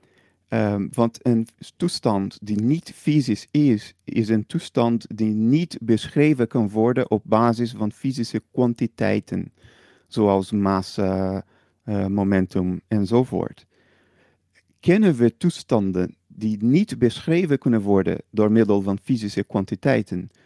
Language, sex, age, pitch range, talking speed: Dutch, male, 40-59, 105-140 Hz, 110 wpm